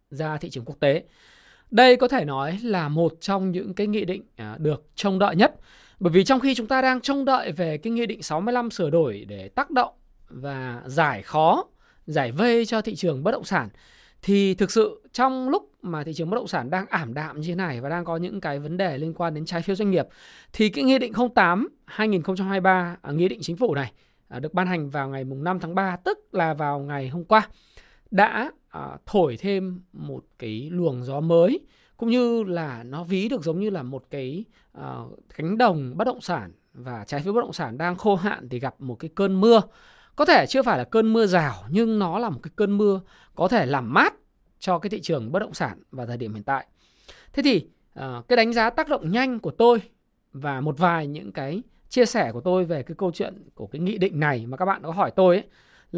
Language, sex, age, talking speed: Vietnamese, male, 20-39, 230 wpm